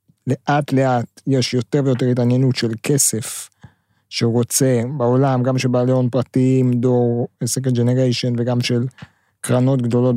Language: English